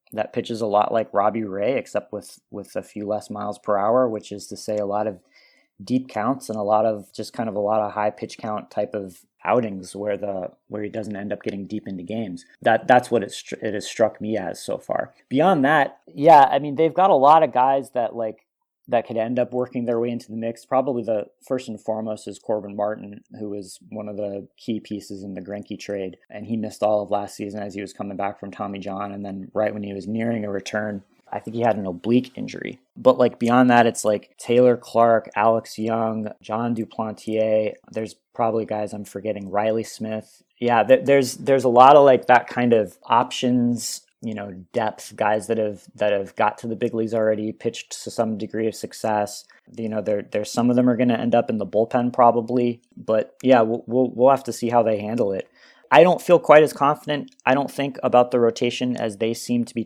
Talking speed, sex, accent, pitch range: 230 wpm, male, American, 105-120 Hz